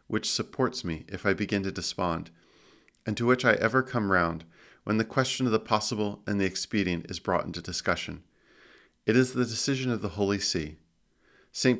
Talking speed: 190 wpm